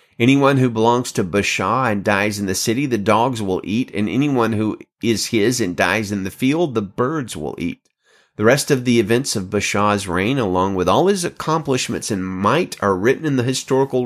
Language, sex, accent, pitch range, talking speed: English, male, American, 100-125 Hz, 205 wpm